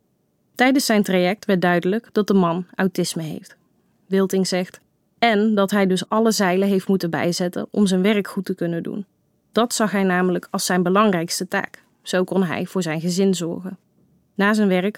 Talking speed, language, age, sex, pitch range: 185 wpm, Dutch, 20-39, female, 180-210 Hz